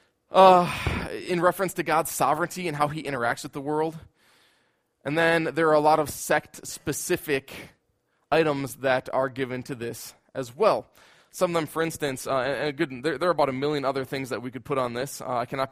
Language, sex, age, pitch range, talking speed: English, male, 20-39, 130-170 Hz, 200 wpm